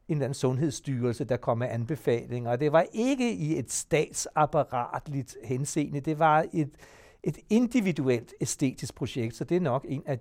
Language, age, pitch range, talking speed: Danish, 60-79, 125-160 Hz, 165 wpm